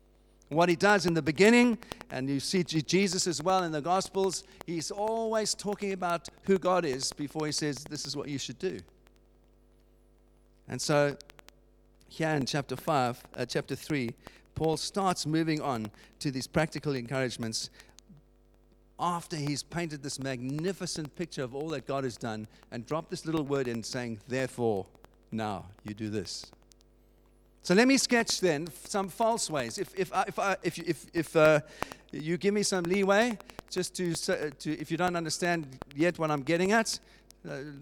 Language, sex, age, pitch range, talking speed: English, male, 50-69, 125-180 Hz, 170 wpm